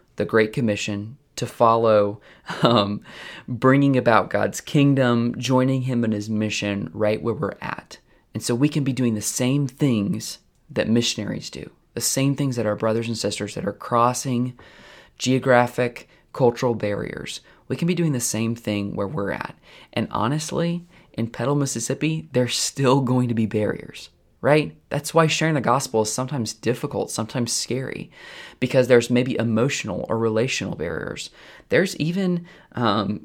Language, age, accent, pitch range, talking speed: English, 20-39, American, 110-140 Hz, 155 wpm